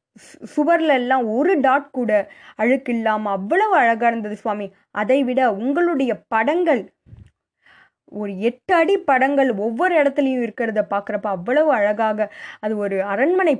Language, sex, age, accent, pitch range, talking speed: Tamil, female, 20-39, native, 200-275 Hz, 115 wpm